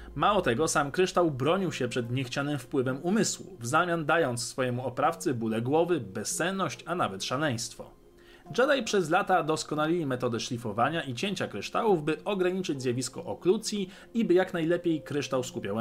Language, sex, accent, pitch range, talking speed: Polish, male, native, 125-180 Hz, 150 wpm